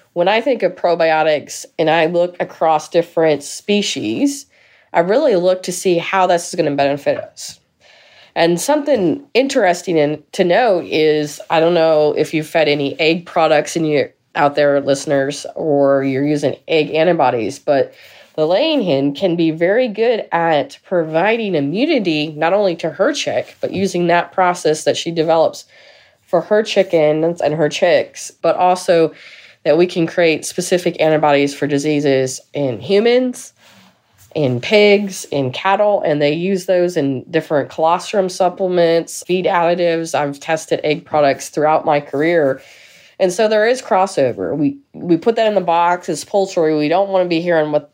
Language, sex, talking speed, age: English, female, 165 wpm, 20-39